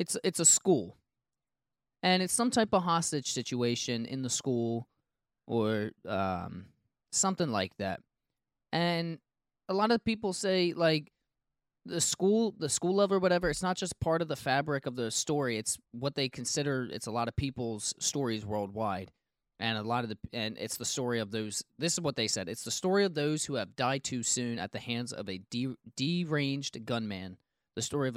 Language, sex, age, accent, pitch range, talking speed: English, male, 20-39, American, 115-155 Hz, 190 wpm